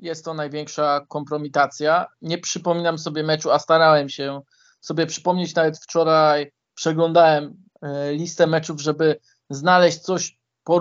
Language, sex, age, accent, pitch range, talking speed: Polish, male, 20-39, native, 150-175 Hz, 115 wpm